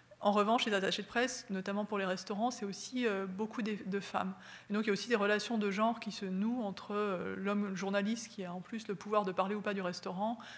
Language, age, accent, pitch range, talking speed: French, 30-49, French, 195-220 Hz, 245 wpm